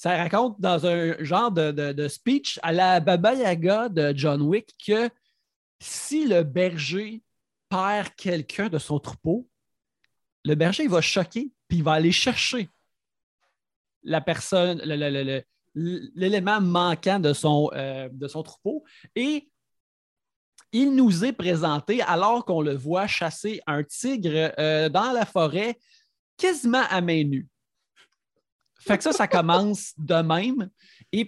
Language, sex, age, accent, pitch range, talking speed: French, male, 30-49, Canadian, 150-215 Hz, 150 wpm